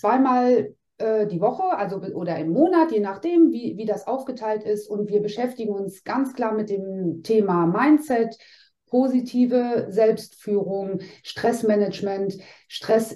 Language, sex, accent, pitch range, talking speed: German, female, German, 195-245 Hz, 130 wpm